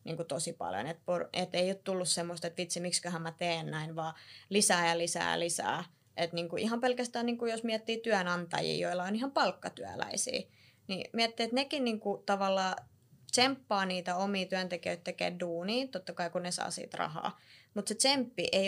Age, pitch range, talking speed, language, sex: 20-39, 175-215 Hz, 185 wpm, Finnish, female